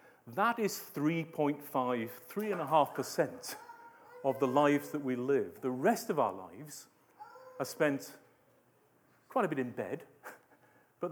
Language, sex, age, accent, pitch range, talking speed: English, male, 40-59, British, 125-170 Hz, 125 wpm